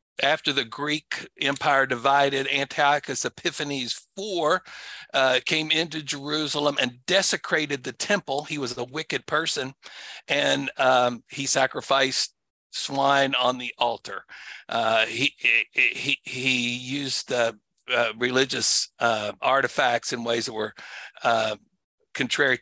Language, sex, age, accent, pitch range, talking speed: English, male, 60-79, American, 120-150 Hz, 120 wpm